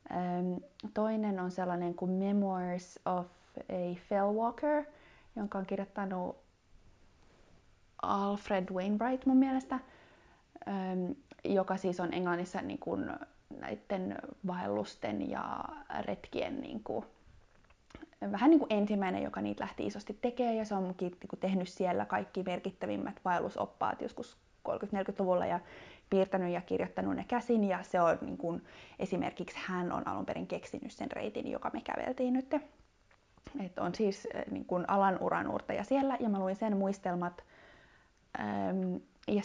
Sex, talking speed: female, 120 wpm